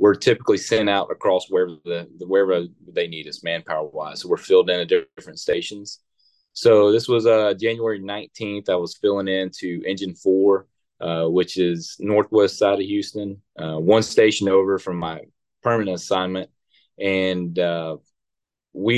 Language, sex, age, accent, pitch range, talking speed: English, male, 20-39, American, 95-125 Hz, 155 wpm